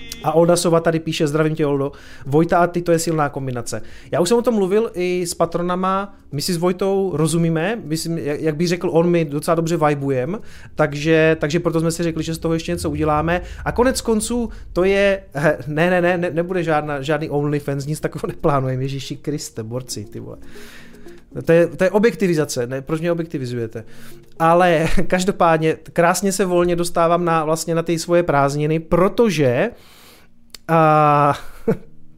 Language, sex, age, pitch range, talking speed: Czech, male, 30-49, 135-170 Hz, 170 wpm